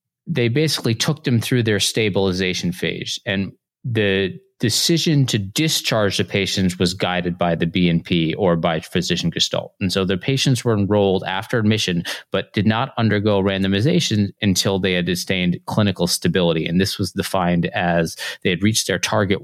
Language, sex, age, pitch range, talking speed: English, male, 30-49, 90-110 Hz, 165 wpm